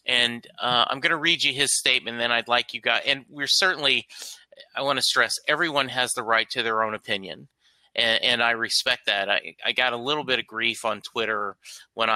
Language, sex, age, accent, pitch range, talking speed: English, male, 30-49, American, 115-135 Hz, 220 wpm